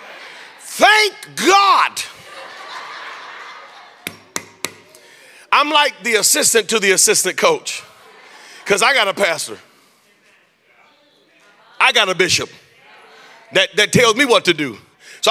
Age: 40-59